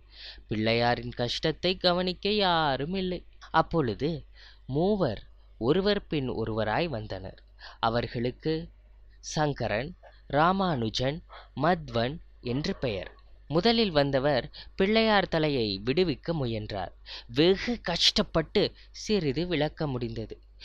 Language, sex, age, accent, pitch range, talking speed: Tamil, female, 20-39, native, 130-185 Hz, 80 wpm